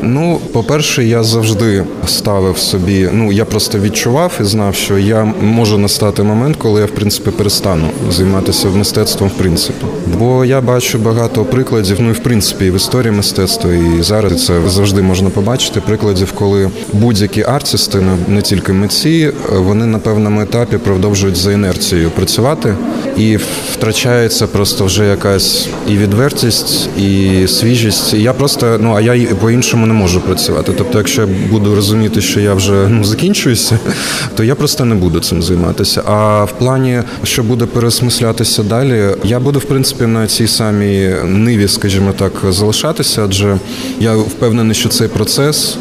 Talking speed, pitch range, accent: 155 wpm, 100-115 Hz, native